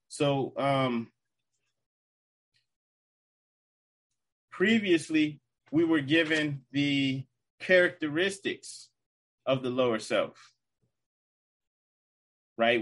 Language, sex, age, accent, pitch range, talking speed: English, male, 30-49, American, 120-150 Hz, 60 wpm